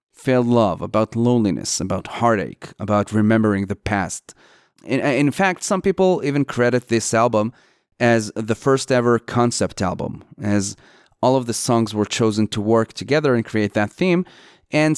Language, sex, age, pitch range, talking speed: English, male, 30-49, 105-130 Hz, 160 wpm